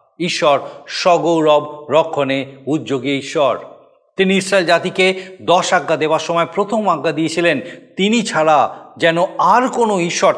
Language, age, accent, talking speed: Bengali, 50-69, native, 120 wpm